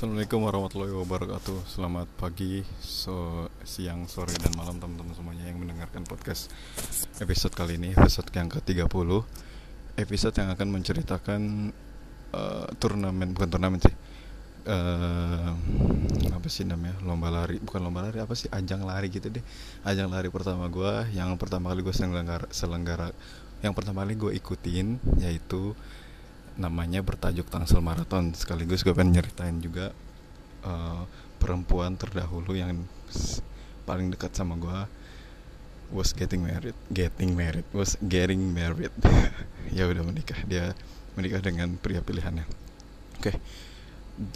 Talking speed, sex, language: 130 wpm, male, Indonesian